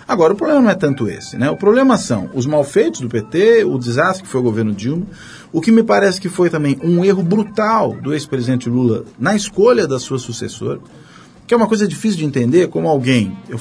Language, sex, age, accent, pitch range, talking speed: Portuguese, male, 40-59, Brazilian, 125-190 Hz, 220 wpm